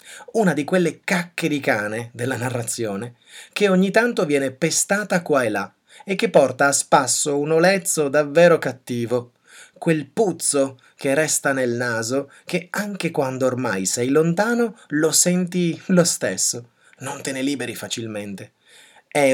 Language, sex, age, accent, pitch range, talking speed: Italian, male, 30-49, native, 125-175 Hz, 145 wpm